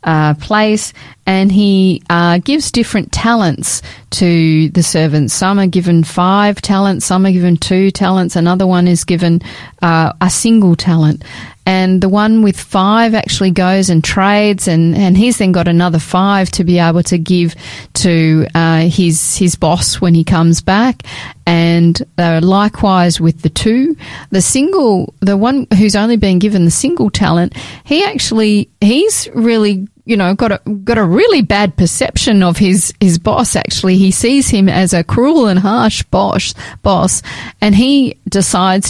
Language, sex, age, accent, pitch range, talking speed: English, female, 40-59, Australian, 170-210 Hz, 165 wpm